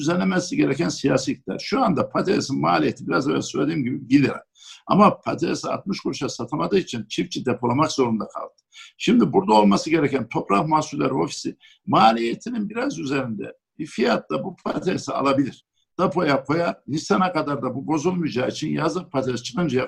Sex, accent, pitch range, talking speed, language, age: male, native, 130-170 Hz, 150 wpm, Turkish, 60-79